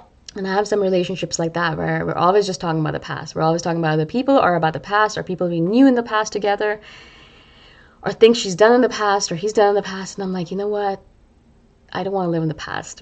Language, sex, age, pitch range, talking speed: English, female, 20-39, 155-190 Hz, 275 wpm